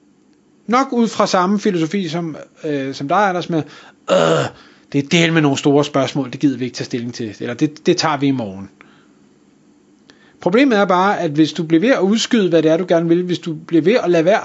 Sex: male